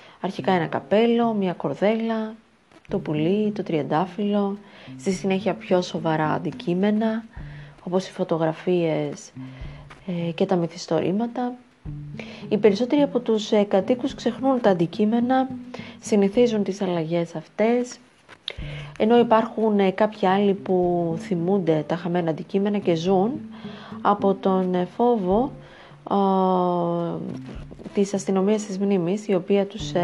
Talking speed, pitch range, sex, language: 105 wpm, 175-215 Hz, female, Greek